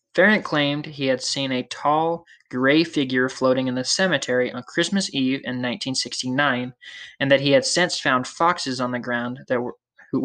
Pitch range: 130-165 Hz